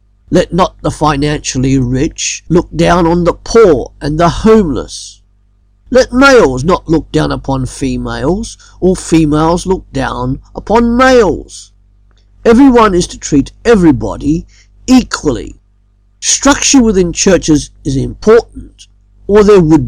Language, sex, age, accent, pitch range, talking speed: English, male, 50-69, British, 105-180 Hz, 120 wpm